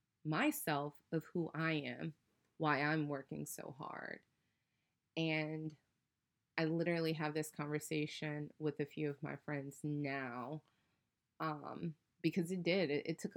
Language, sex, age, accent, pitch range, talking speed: English, female, 20-39, American, 140-160 Hz, 135 wpm